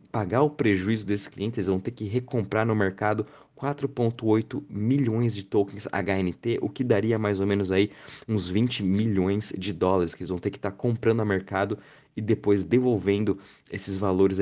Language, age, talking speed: Portuguese, 20-39, 185 wpm